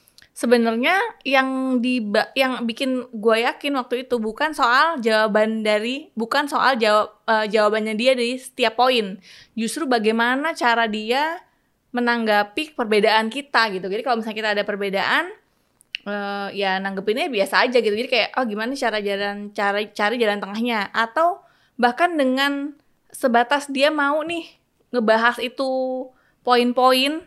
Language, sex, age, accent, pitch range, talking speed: Indonesian, female, 20-39, native, 205-255 Hz, 140 wpm